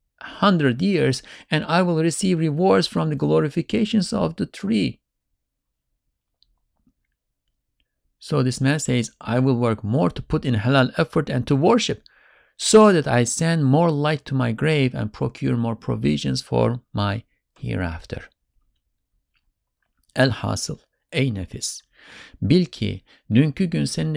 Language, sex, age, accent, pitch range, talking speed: English, male, 50-69, Turkish, 110-145 Hz, 130 wpm